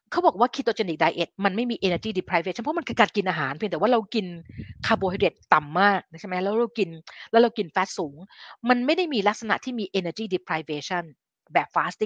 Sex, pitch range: female, 170-215 Hz